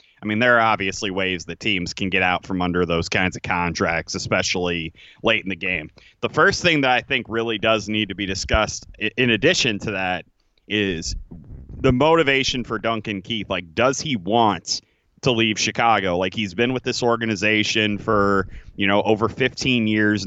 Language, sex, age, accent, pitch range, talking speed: English, male, 30-49, American, 100-120 Hz, 185 wpm